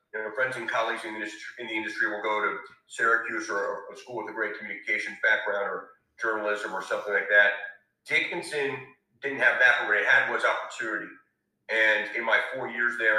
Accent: American